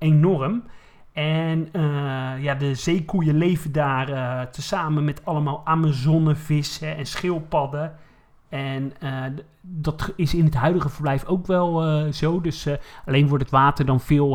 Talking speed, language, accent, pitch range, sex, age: 145 wpm, Dutch, Dutch, 130-155 Hz, male, 40-59